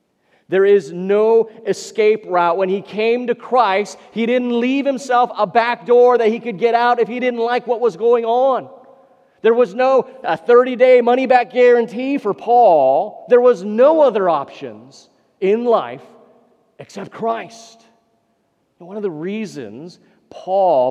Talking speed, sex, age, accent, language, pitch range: 150 wpm, male, 40-59, American, English, 145-230 Hz